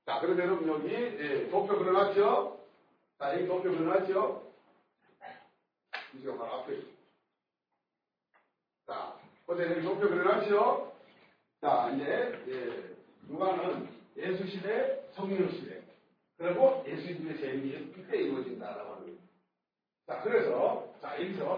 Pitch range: 190-275 Hz